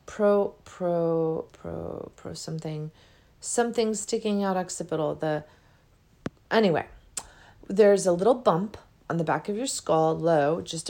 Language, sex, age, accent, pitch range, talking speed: English, female, 40-59, American, 155-200 Hz, 125 wpm